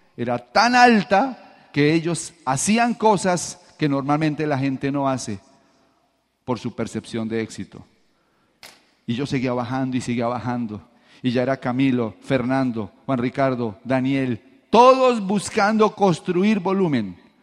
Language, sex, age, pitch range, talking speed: Spanish, male, 40-59, 130-185 Hz, 125 wpm